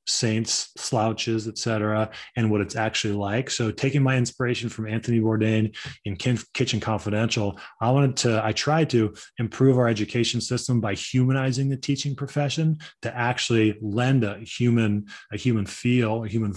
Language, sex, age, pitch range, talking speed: English, male, 20-39, 110-130 Hz, 160 wpm